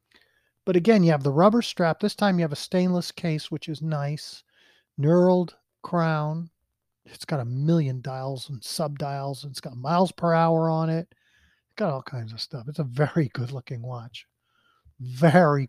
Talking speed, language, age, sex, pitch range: 175 wpm, English, 40-59, male, 145-190 Hz